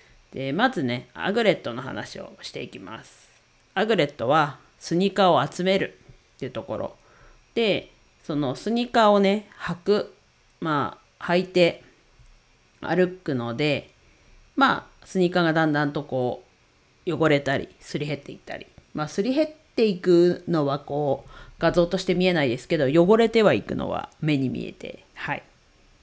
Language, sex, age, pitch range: Japanese, female, 40-59, 145-180 Hz